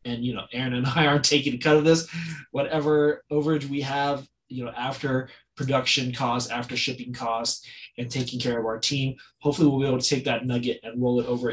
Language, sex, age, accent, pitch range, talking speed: English, male, 20-39, American, 120-145 Hz, 220 wpm